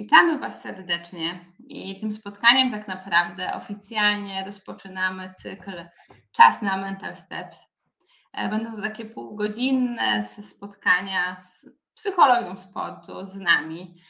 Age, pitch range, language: 20-39, 185-215 Hz, Polish